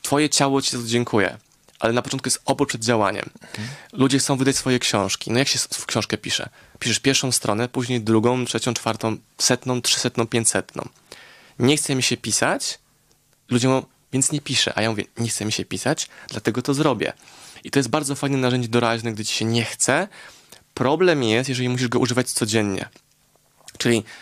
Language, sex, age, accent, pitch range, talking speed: Polish, male, 20-39, native, 115-135 Hz, 185 wpm